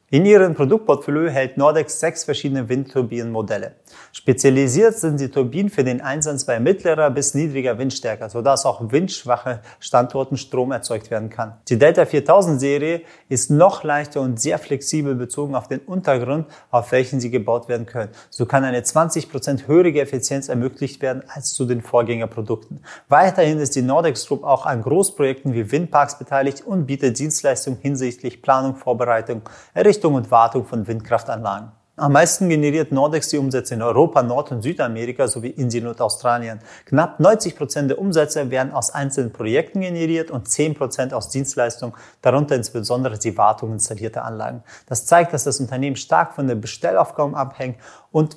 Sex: male